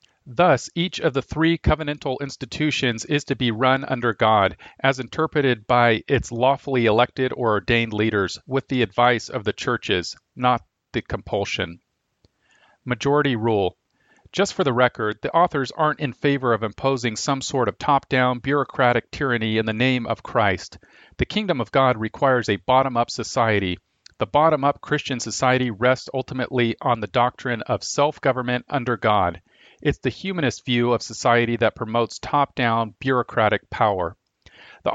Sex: male